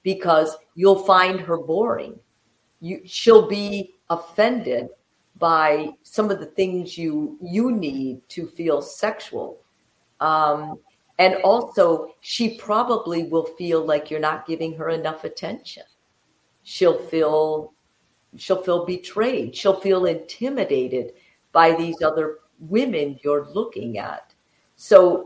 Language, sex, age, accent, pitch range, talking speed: English, female, 50-69, American, 155-210 Hz, 120 wpm